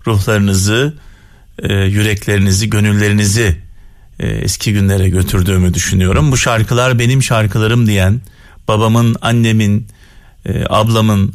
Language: Turkish